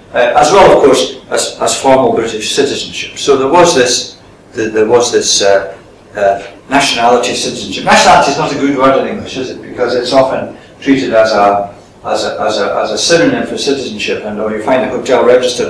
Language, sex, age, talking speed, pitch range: English, male, 60-79, 205 wpm, 120-165 Hz